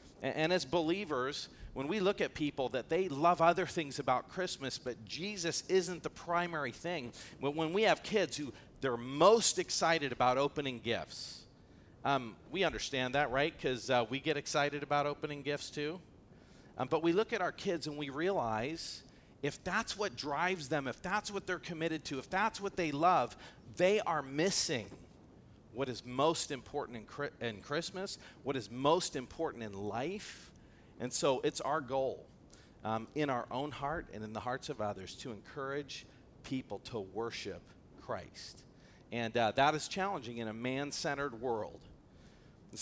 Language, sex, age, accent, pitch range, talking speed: English, male, 40-59, American, 125-165 Hz, 170 wpm